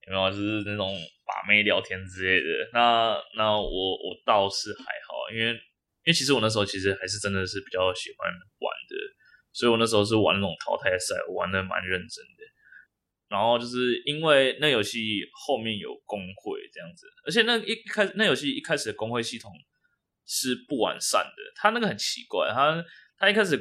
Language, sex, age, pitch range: Chinese, male, 20-39, 105-150 Hz